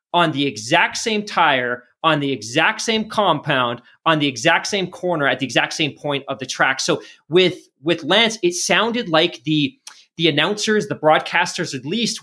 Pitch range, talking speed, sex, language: 140-175 Hz, 180 wpm, male, English